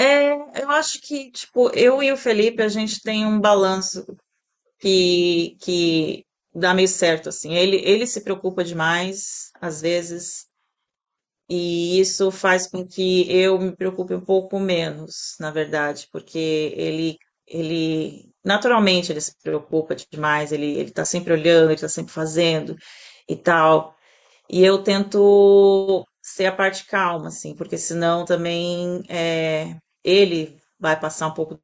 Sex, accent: female, Brazilian